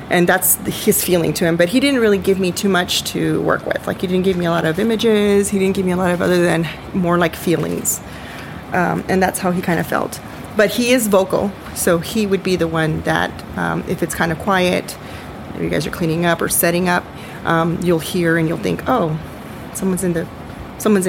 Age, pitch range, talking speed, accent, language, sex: 30-49, 165-190 Hz, 240 wpm, American, English, female